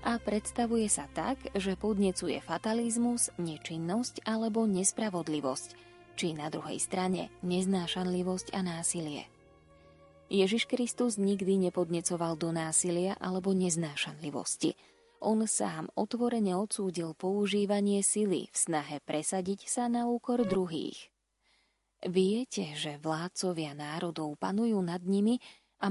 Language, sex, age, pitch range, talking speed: Slovak, female, 20-39, 170-215 Hz, 105 wpm